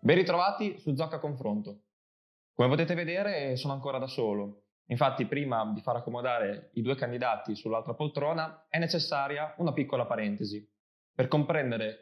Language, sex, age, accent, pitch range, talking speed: Italian, male, 20-39, native, 115-155 Hz, 145 wpm